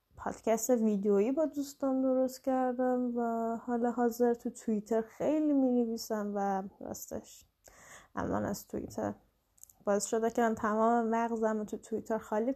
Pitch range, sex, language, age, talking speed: 210-250 Hz, female, Persian, 10-29, 135 wpm